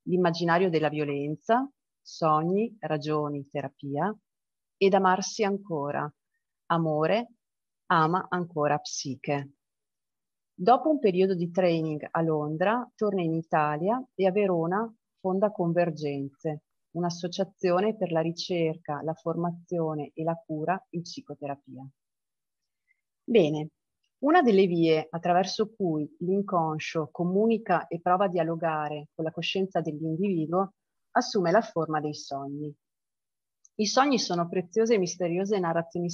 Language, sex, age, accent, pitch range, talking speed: Italian, female, 30-49, native, 155-195 Hz, 110 wpm